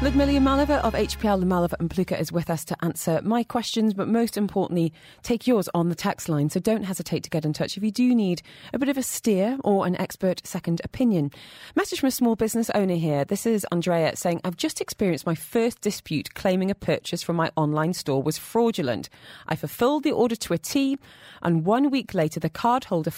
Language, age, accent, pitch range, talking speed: English, 30-49, British, 160-230 Hz, 215 wpm